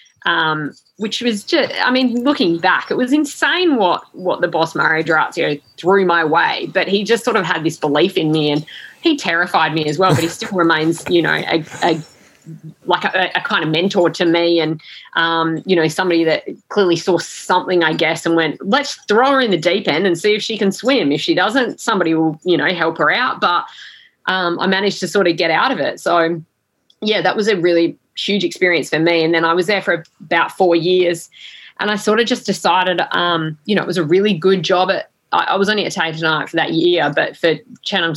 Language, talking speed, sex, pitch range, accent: English, 230 wpm, female, 160-185 Hz, Australian